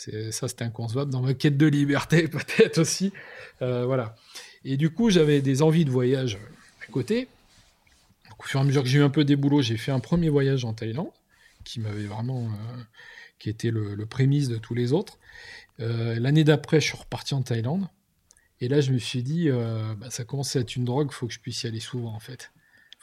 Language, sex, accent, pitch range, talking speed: French, male, French, 115-145 Hz, 230 wpm